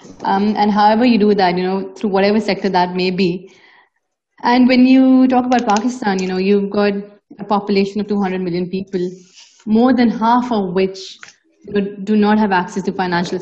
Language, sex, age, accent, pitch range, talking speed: English, female, 30-49, Indian, 190-220 Hz, 185 wpm